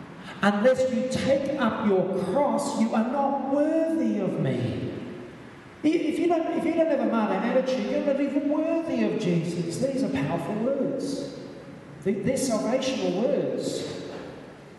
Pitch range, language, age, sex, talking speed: 160-245 Hz, English, 40-59, male, 140 wpm